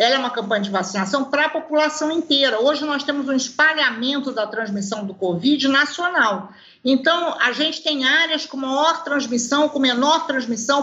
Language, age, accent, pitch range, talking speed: Portuguese, 50-69, Brazilian, 250-305 Hz, 170 wpm